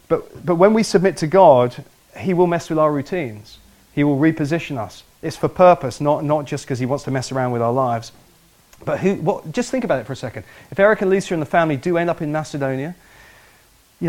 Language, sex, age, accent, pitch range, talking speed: English, male, 40-59, British, 135-170 Hz, 235 wpm